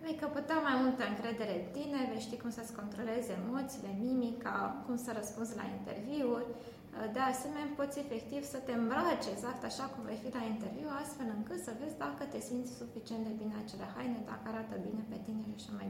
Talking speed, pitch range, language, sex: 205 wpm, 215-270 Hz, Romanian, female